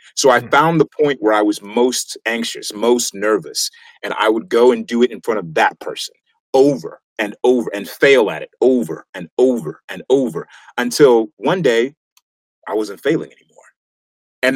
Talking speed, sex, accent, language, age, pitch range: 180 wpm, male, American, English, 30-49, 110-160 Hz